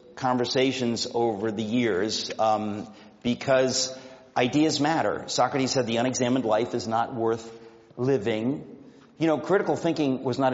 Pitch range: 120-155 Hz